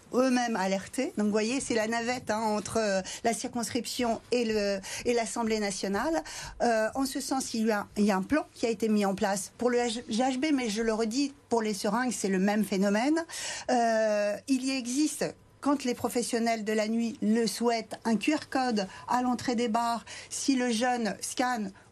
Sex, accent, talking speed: female, French, 190 wpm